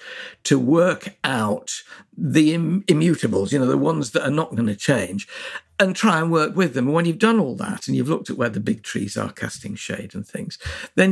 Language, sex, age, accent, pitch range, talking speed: English, male, 60-79, British, 135-200 Hz, 225 wpm